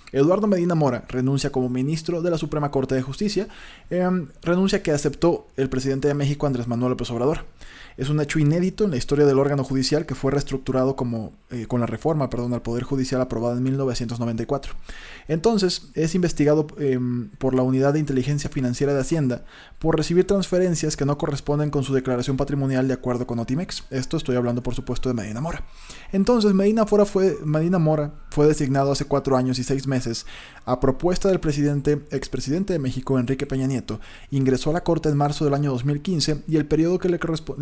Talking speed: 195 wpm